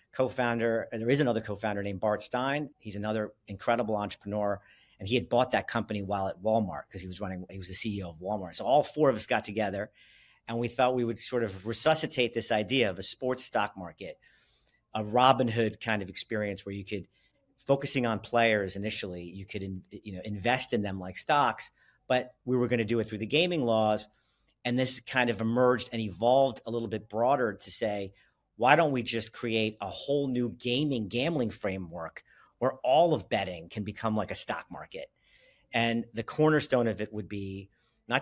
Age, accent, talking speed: 50-69, American, 205 wpm